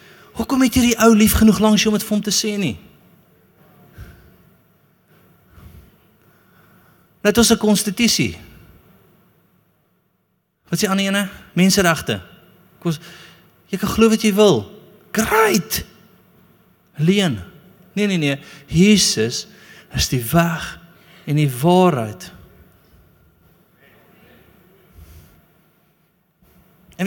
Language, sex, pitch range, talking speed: English, male, 150-195 Hz, 95 wpm